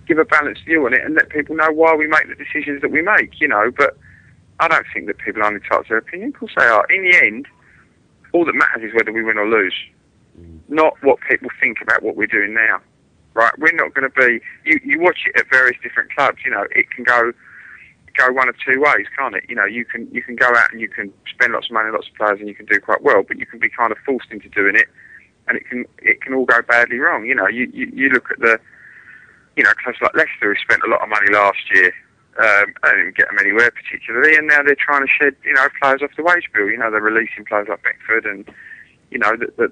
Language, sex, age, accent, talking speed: English, male, 30-49, British, 265 wpm